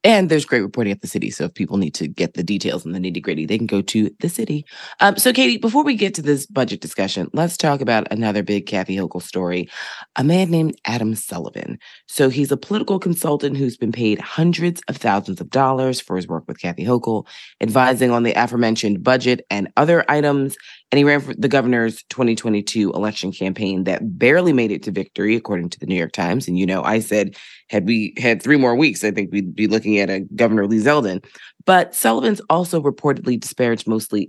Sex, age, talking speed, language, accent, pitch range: female, 20-39, 215 wpm, English, American, 105-150 Hz